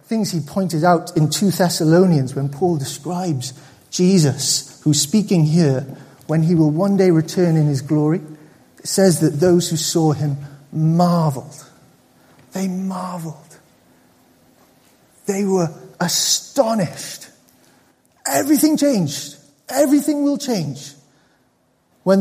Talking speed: 115 wpm